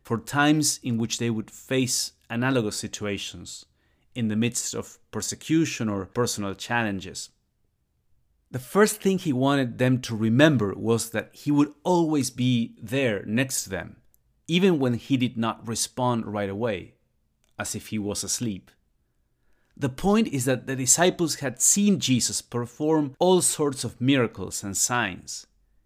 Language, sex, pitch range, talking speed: English, male, 110-140 Hz, 150 wpm